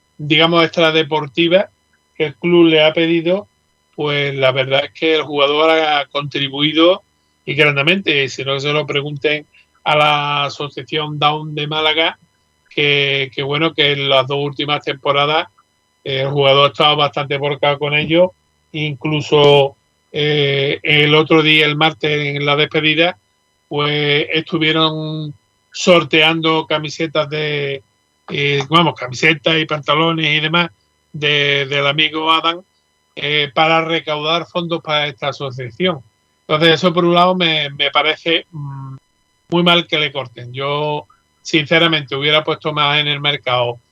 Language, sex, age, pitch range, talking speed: Spanish, male, 40-59, 140-160 Hz, 140 wpm